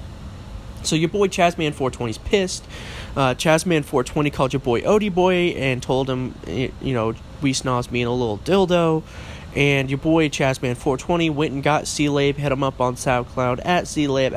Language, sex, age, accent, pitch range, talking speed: English, male, 20-39, American, 125-165 Hz, 170 wpm